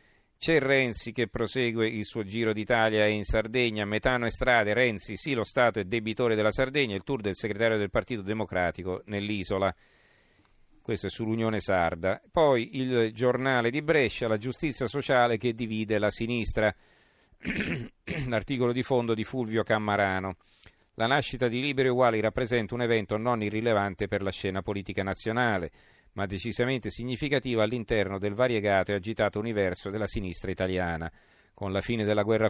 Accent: native